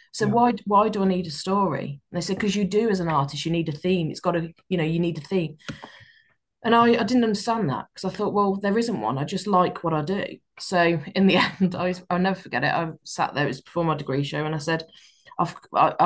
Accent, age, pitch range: British, 20-39, 155-195 Hz